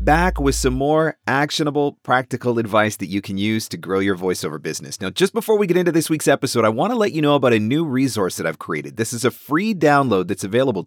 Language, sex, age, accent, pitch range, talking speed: English, male, 30-49, American, 100-150 Hz, 250 wpm